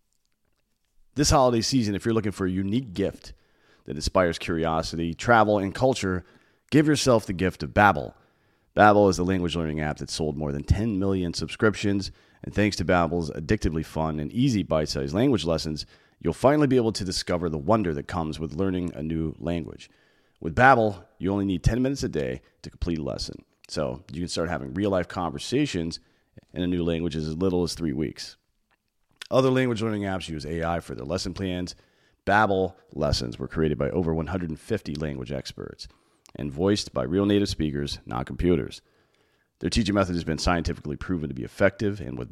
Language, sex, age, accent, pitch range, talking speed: English, male, 30-49, American, 80-100 Hz, 185 wpm